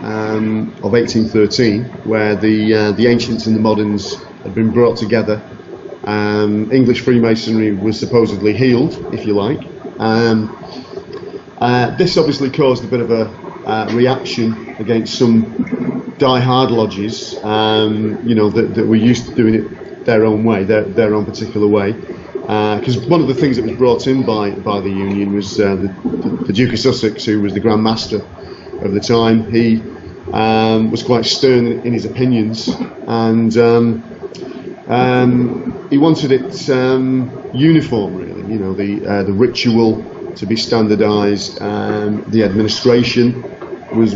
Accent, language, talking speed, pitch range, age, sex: British, English, 160 wpm, 110-120 Hz, 40-59, male